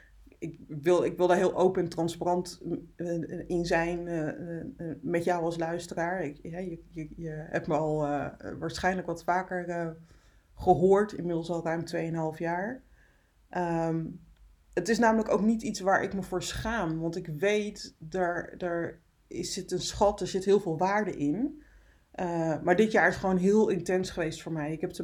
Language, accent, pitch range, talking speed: Dutch, Dutch, 165-190 Hz, 160 wpm